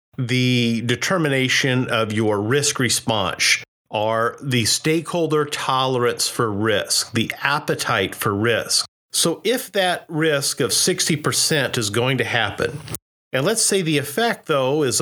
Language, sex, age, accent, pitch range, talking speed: English, male, 40-59, American, 120-155 Hz, 130 wpm